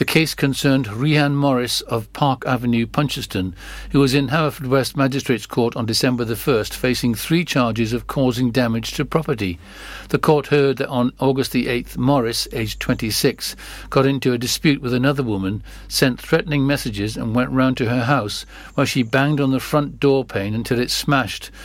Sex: male